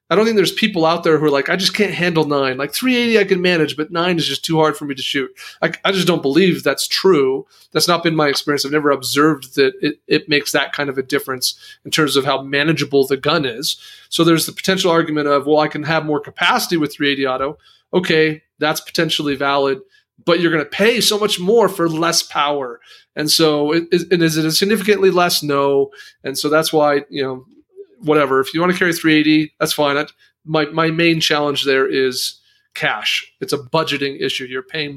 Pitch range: 140-170 Hz